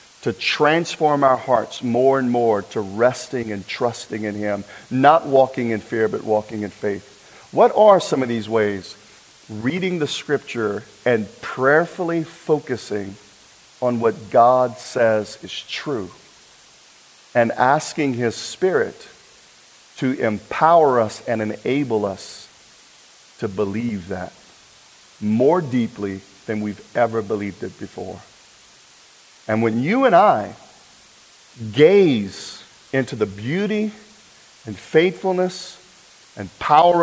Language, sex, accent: English, male, American